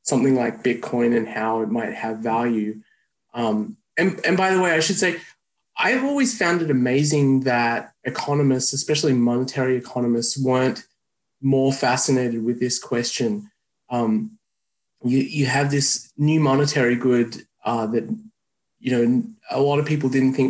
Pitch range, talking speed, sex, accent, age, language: 125-150 Hz, 155 wpm, male, Australian, 20-39, English